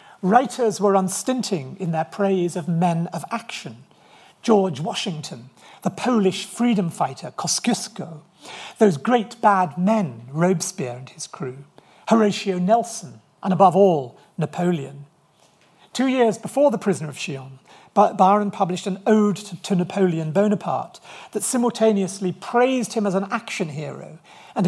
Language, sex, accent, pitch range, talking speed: English, male, British, 160-215 Hz, 135 wpm